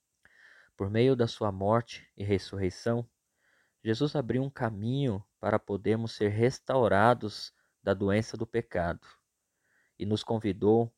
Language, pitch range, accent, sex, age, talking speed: Portuguese, 95-120 Hz, Brazilian, male, 20-39, 120 wpm